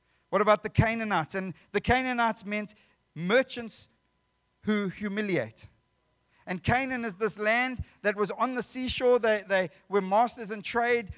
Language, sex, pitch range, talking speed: English, male, 205-240 Hz, 145 wpm